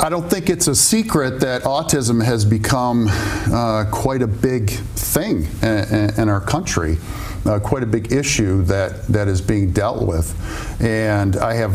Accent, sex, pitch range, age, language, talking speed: American, male, 95-115 Hz, 50-69, English, 175 wpm